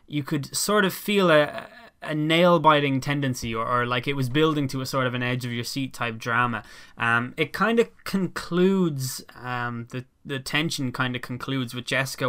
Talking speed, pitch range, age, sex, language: 180 wpm, 125-155 Hz, 10-29, male, English